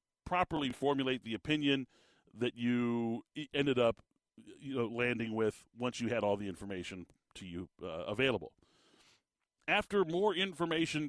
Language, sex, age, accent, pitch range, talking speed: English, male, 40-59, American, 110-140 Hz, 135 wpm